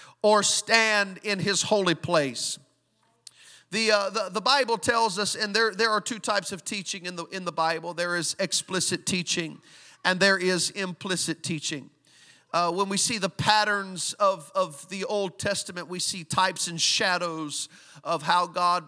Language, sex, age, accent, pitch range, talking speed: English, male, 40-59, American, 165-205 Hz, 170 wpm